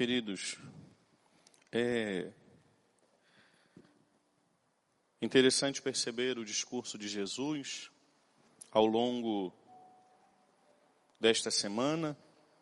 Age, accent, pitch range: 40-59, Brazilian, 100-150 Hz